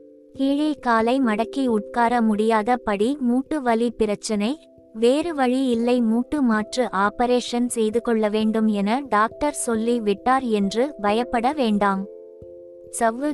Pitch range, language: 220-260 Hz, Tamil